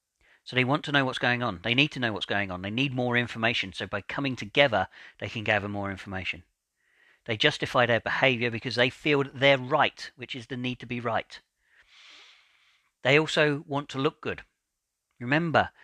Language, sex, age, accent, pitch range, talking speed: English, male, 40-59, British, 105-130 Hz, 195 wpm